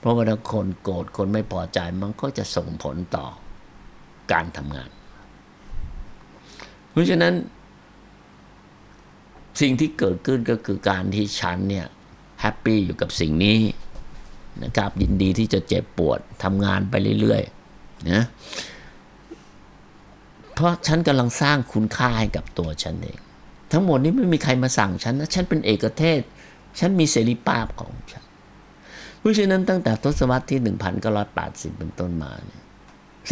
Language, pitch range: Thai, 90-115 Hz